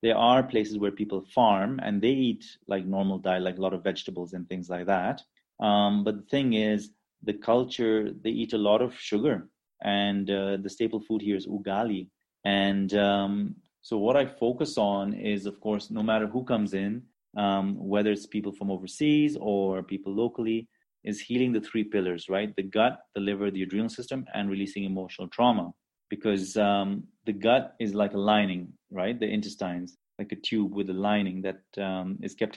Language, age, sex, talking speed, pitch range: English, 30-49, male, 190 wpm, 95-110 Hz